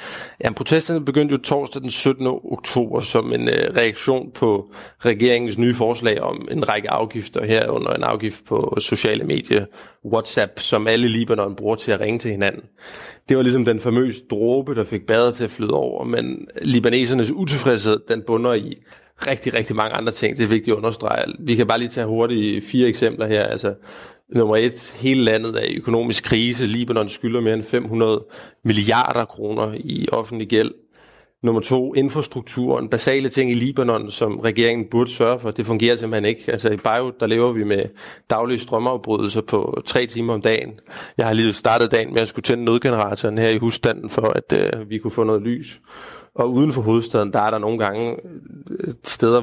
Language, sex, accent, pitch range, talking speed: Danish, male, native, 110-125 Hz, 185 wpm